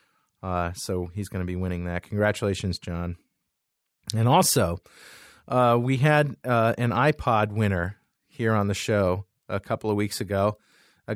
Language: English